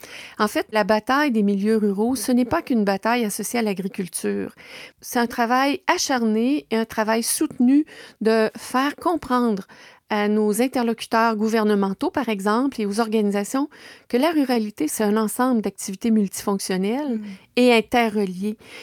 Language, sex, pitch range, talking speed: French, female, 210-260 Hz, 145 wpm